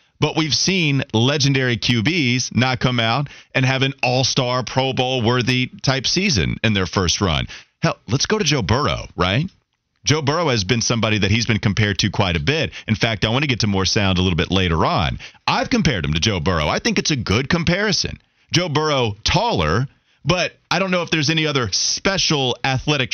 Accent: American